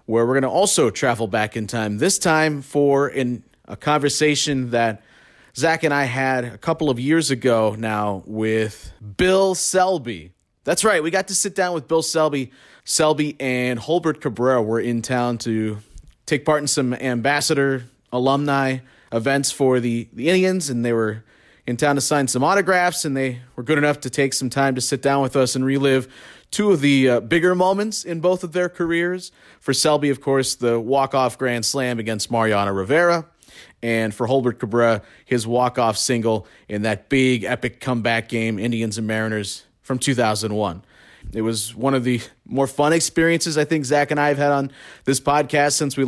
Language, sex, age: English, male, 30-49